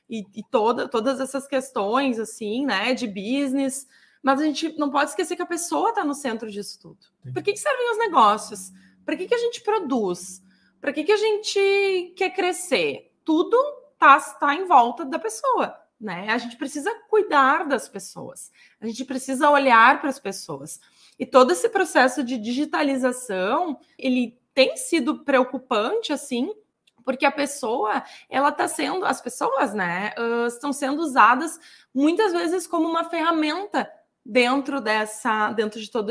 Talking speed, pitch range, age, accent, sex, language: 160 wpm, 225-310 Hz, 20-39, Brazilian, female, Portuguese